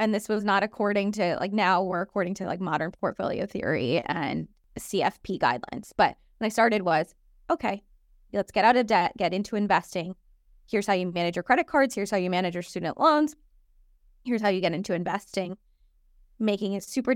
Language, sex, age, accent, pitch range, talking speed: English, female, 20-39, American, 190-235 Hz, 190 wpm